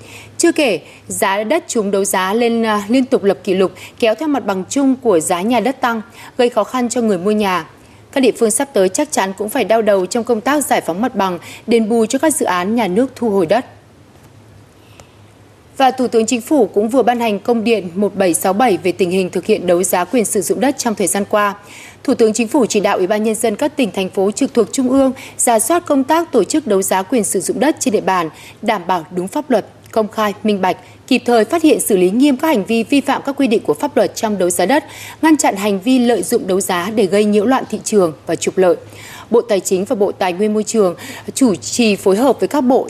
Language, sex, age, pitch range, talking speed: Vietnamese, female, 20-39, 190-255 Hz, 255 wpm